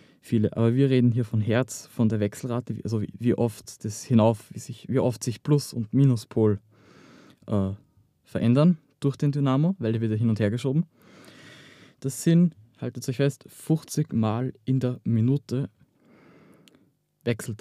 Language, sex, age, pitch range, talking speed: German, male, 20-39, 110-135 Hz, 150 wpm